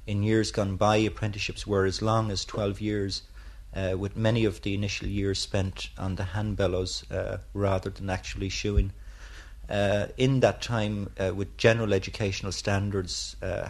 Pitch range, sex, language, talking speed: 95-105 Hz, male, English, 165 wpm